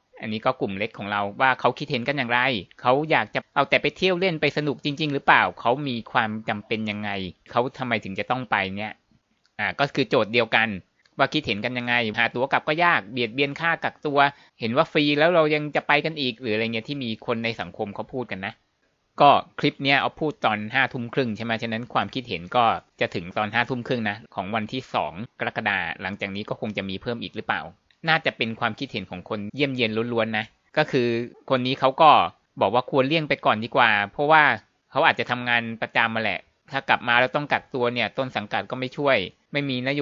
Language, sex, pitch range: Thai, male, 110-140 Hz